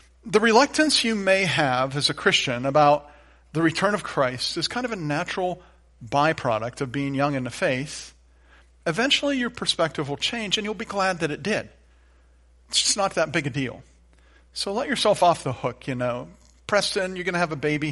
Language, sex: English, male